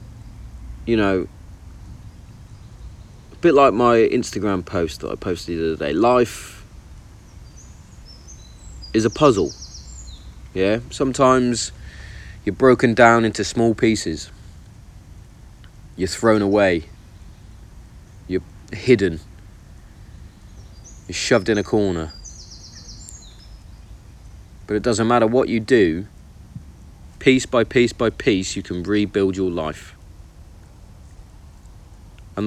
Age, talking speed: 40-59, 100 wpm